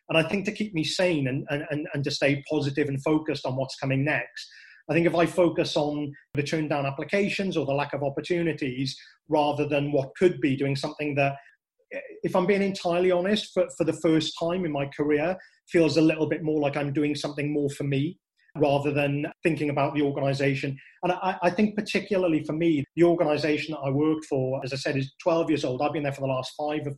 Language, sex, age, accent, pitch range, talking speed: English, male, 30-49, British, 145-170 Hz, 225 wpm